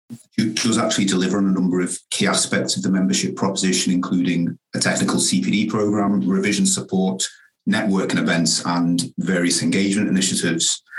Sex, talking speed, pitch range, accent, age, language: male, 145 wpm, 90-105 Hz, British, 40-59, English